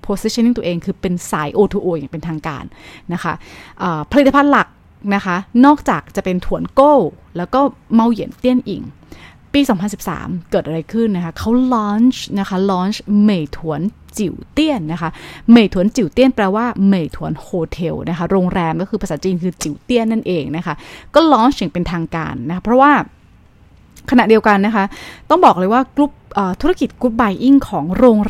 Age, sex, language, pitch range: 20-39, female, Thai, 175-245 Hz